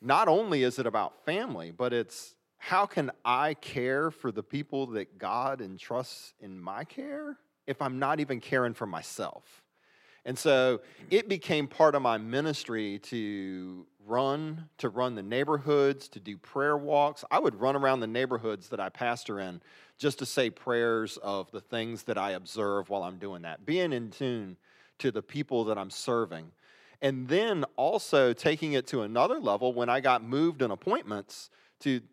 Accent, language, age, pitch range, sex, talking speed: American, English, 40-59, 110-145 Hz, male, 175 wpm